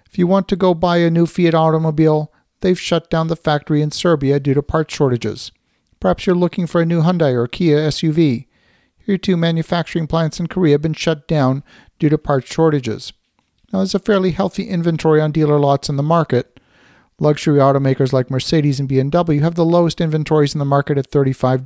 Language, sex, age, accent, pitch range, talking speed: English, male, 50-69, American, 145-175 Hz, 200 wpm